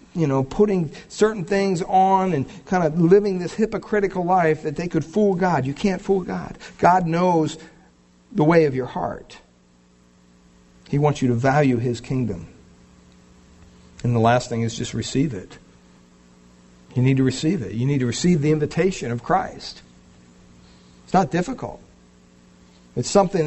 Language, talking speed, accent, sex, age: English, 160 wpm, American, male, 60-79